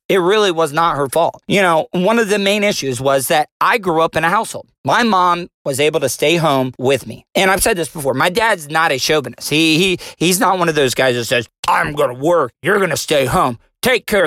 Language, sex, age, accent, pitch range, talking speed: English, male, 40-59, American, 140-190 Hz, 255 wpm